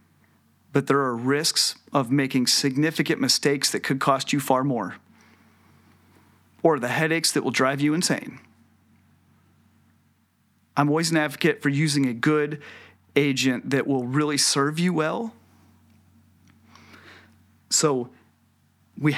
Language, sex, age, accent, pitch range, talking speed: English, male, 40-59, American, 125-160 Hz, 120 wpm